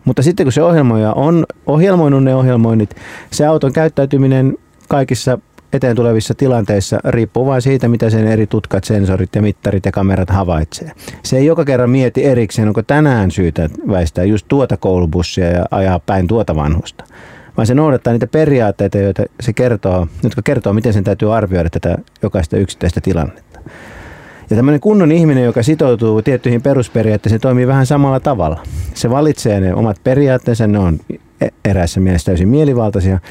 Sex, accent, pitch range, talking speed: male, native, 100-135 Hz, 160 wpm